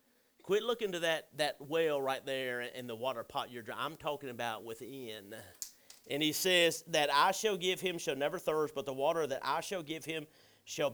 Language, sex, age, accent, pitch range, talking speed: English, male, 40-59, American, 140-210 Hz, 210 wpm